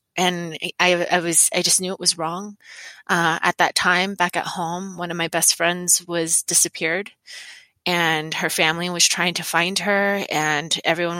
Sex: female